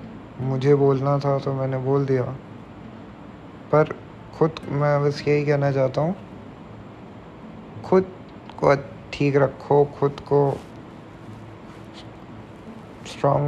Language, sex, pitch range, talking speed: Hindi, male, 110-135 Hz, 100 wpm